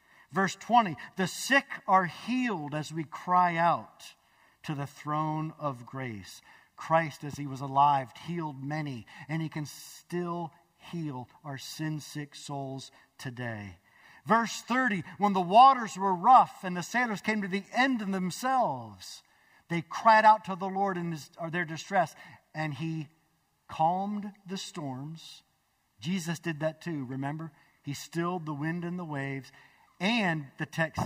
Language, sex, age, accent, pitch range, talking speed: English, male, 50-69, American, 140-190 Hz, 150 wpm